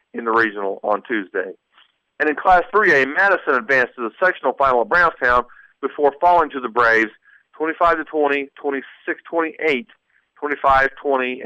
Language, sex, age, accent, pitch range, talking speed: English, male, 40-59, American, 125-160 Hz, 130 wpm